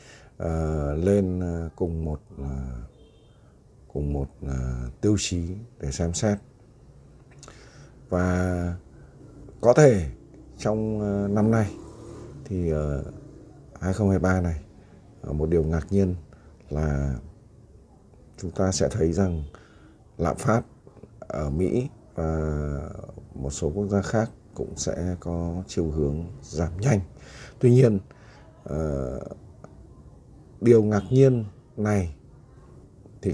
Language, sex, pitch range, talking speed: Vietnamese, male, 75-105 Hz, 110 wpm